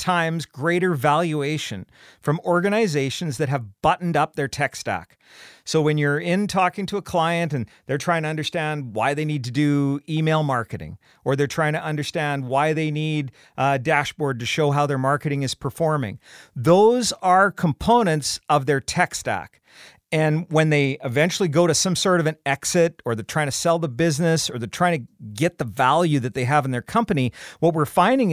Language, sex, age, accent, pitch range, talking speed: English, male, 40-59, American, 135-170 Hz, 190 wpm